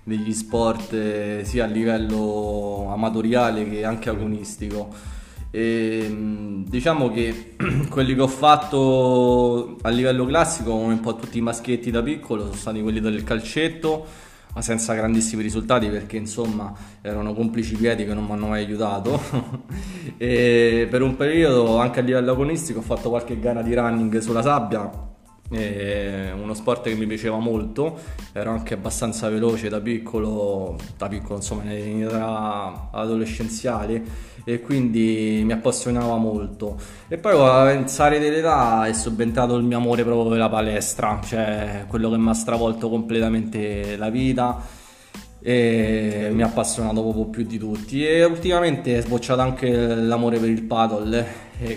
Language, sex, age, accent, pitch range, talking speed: Italian, male, 20-39, native, 110-120 Hz, 150 wpm